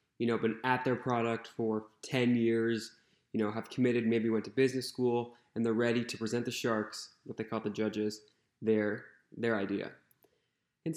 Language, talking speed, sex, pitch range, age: English, 185 wpm, male, 110-125 Hz, 20-39